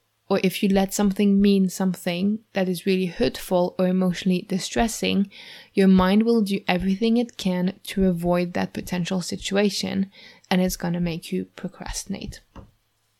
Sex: female